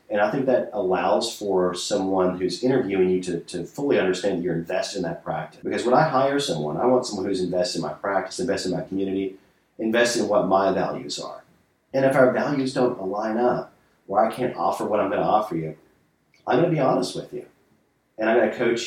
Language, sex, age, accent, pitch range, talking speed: English, male, 40-59, American, 90-125 Hz, 230 wpm